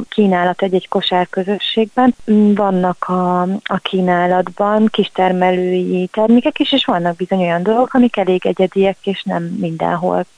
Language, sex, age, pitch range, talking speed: Hungarian, female, 30-49, 180-205 Hz, 135 wpm